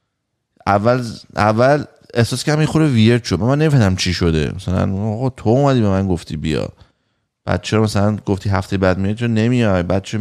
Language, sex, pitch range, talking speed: Persian, male, 95-120 Hz, 180 wpm